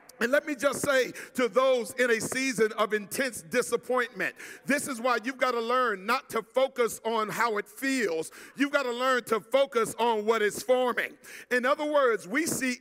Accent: American